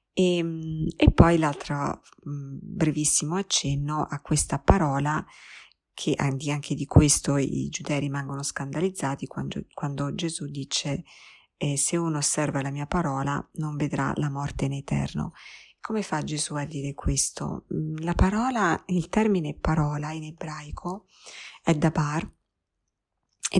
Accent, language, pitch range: native, Italian, 140-160 Hz